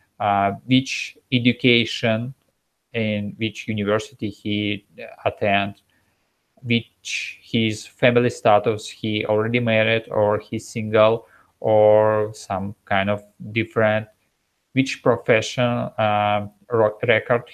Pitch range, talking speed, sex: 110-125 Hz, 95 wpm, male